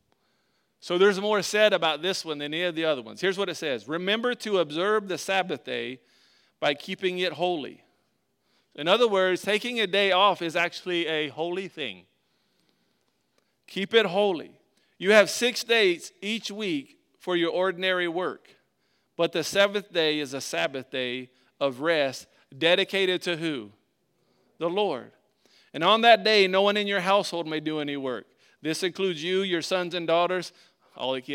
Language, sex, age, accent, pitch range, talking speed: English, male, 40-59, American, 160-210 Hz, 170 wpm